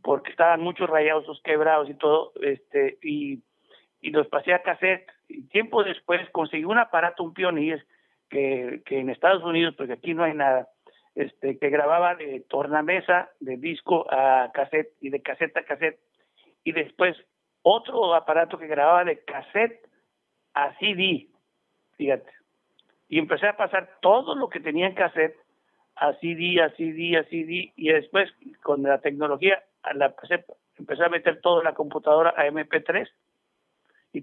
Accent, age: Mexican, 60-79